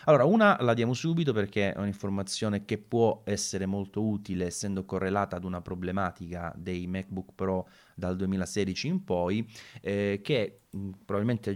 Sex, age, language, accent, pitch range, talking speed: male, 30-49, Italian, native, 90-110 Hz, 145 wpm